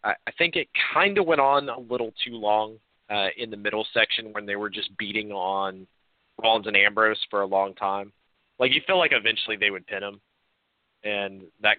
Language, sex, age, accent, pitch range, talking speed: English, male, 30-49, American, 100-120 Hz, 205 wpm